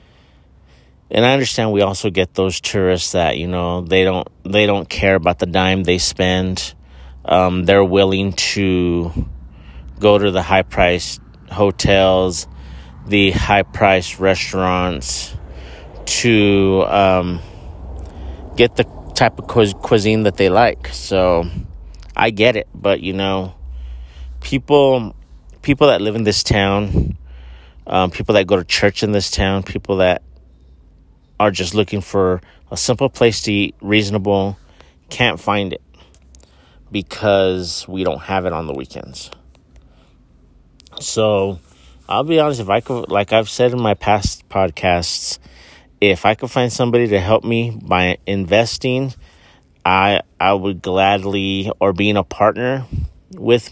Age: 30-49